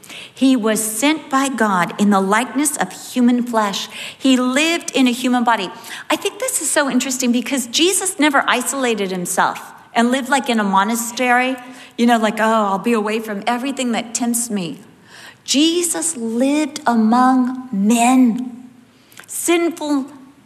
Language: English